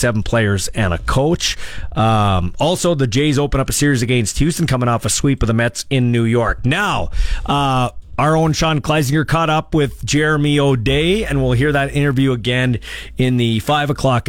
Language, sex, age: English, male, 40-59